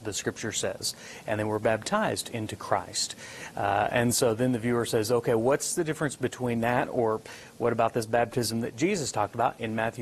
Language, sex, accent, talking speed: English, male, American, 200 wpm